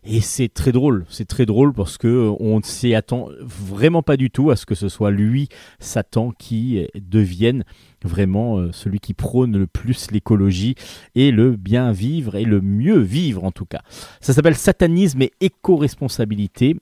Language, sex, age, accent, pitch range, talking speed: French, male, 40-59, French, 100-130 Hz, 165 wpm